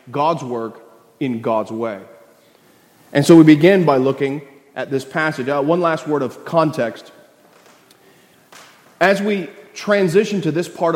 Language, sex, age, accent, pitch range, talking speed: English, male, 30-49, American, 140-180 Hz, 135 wpm